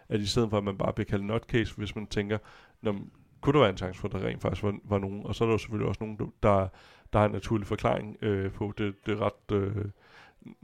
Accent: native